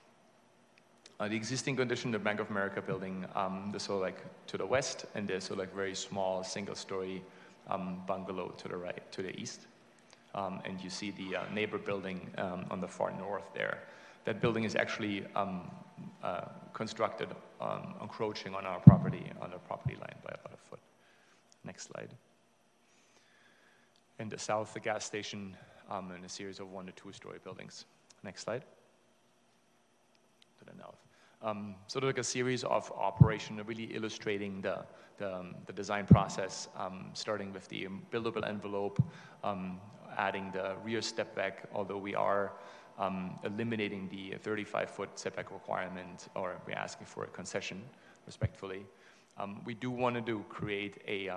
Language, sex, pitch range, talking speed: English, male, 95-110 Hz, 160 wpm